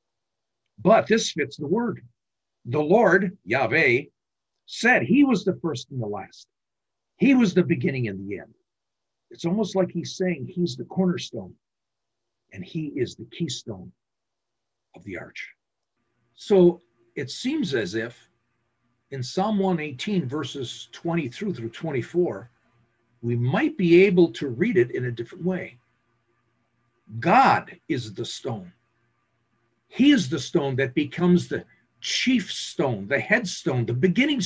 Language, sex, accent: English, male, American